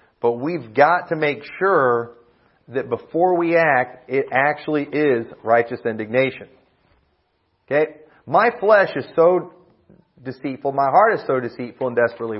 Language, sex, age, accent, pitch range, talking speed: English, male, 40-59, American, 125-170 Hz, 135 wpm